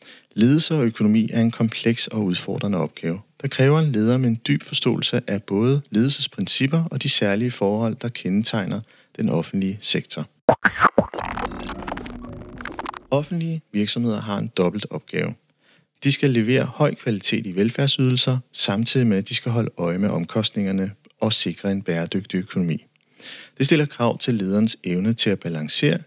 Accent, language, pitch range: native, Danish, 105-135 Hz